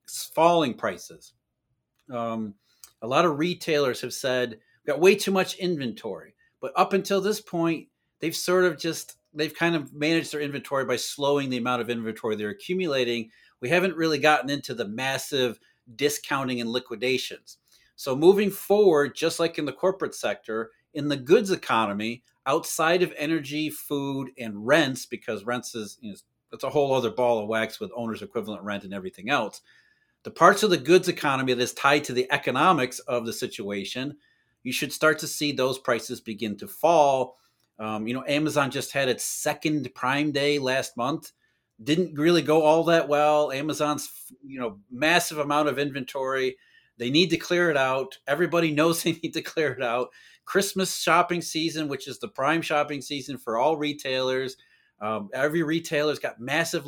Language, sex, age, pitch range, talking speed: English, male, 40-59, 125-165 Hz, 175 wpm